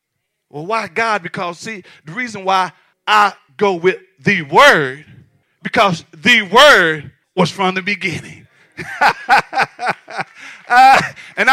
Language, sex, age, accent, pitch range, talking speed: English, male, 40-59, American, 160-230 Hz, 115 wpm